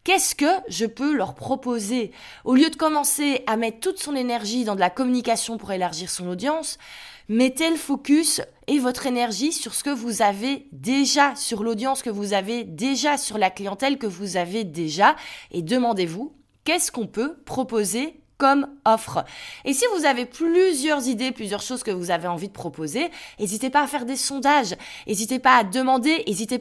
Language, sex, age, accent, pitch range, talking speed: French, female, 20-39, French, 215-280 Hz, 185 wpm